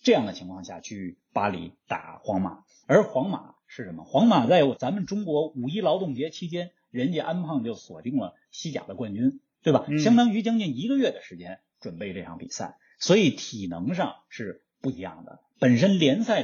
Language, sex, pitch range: Chinese, male, 135-225 Hz